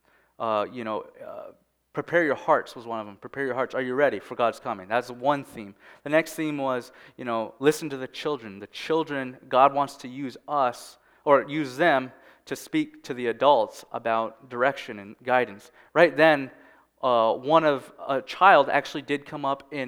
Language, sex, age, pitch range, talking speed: English, male, 20-39, 125-155 Hz, 190 wpm